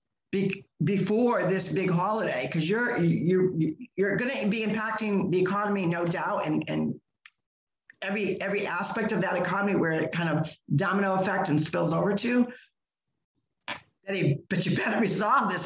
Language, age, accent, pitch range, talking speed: English, 50-69, American, 170-220 Hz, 150 wpm